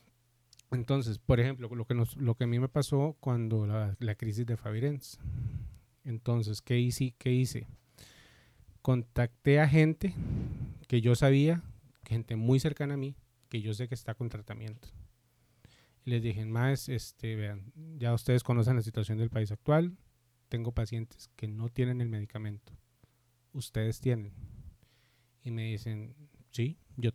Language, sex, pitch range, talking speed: Spanish, male, 115-125 Hz, 150 wpm